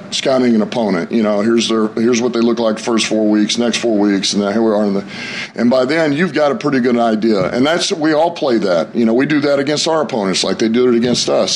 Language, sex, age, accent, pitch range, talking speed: English, male, 40-59, American, 115-140 Hz, 285 wpm